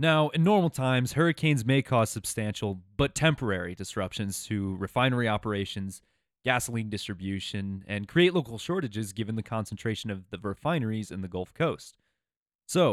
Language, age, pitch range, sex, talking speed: English, 20-39, 100-140 Hz, male, 145 wpm